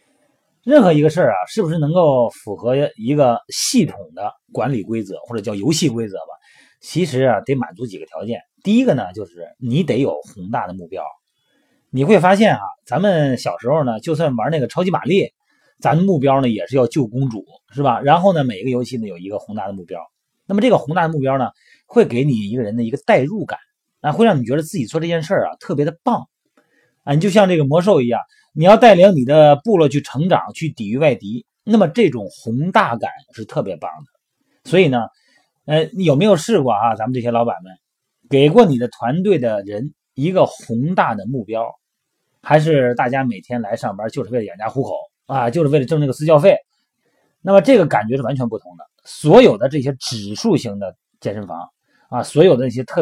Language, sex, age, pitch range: Chinese, male, 30-49, 125-185 Hz